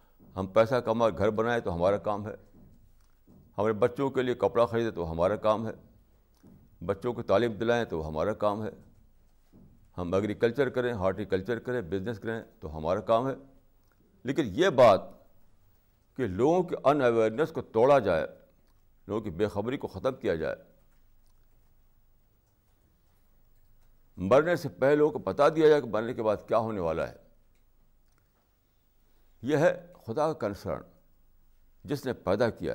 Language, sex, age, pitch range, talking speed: Urdu, male, 60-79, 95-130 Hz, 150 wpm